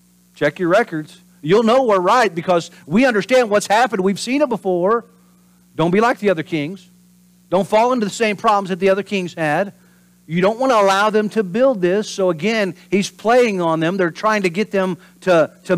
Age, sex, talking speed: 50-69, male, 210 wpm